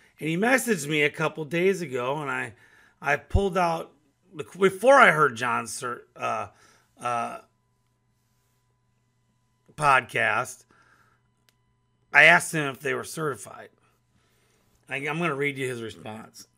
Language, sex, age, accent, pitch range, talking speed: English, male, 30-49, American, 135-180 Hz, 125 wpm